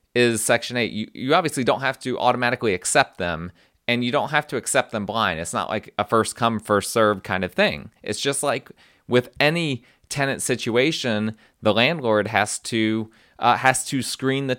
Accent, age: American, 30-49